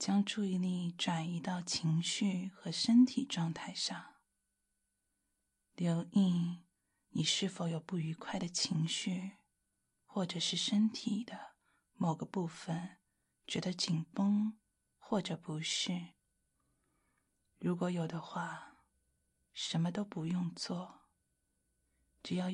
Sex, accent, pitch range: female, native, 170-220 Hz